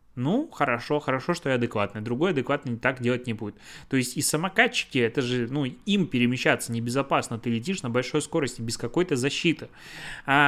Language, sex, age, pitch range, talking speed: Russian, male, 20-39, 120-150 Hz, 180 wpm